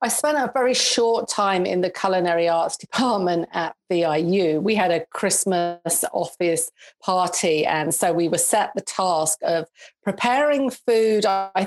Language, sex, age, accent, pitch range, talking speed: English, female, 40-59, British, 175-220 Hz, 155 wpm